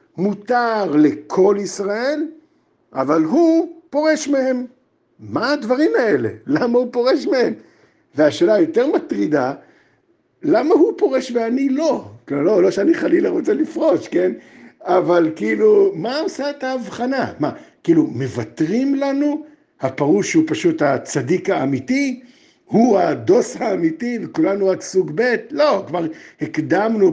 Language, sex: Hebrew, male